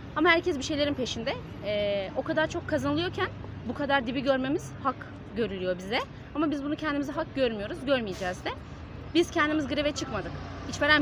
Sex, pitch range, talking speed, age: female, 240-295 Hz, 165 wpm, 30-49